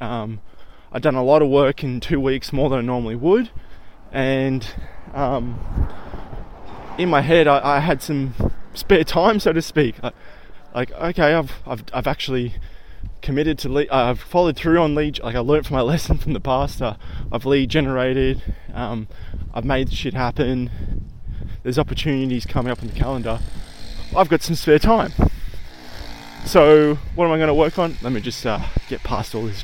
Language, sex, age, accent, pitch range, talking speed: English, male, 20-39, Australian, 115-160 Hz, 185 wpm